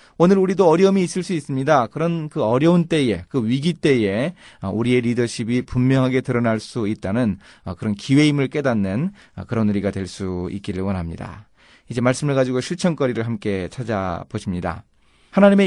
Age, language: 30-49, Korean